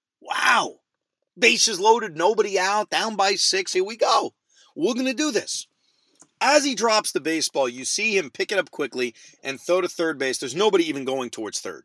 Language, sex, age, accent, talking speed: English, male, 40-59, American, 200 wpm